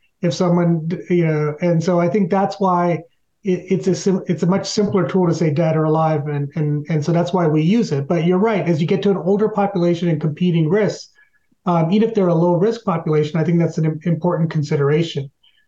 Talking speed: 230 wpm